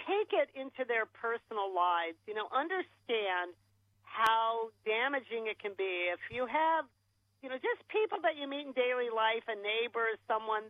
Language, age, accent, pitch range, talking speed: English, 50-69, American, 210-280 Hz, 170 wpm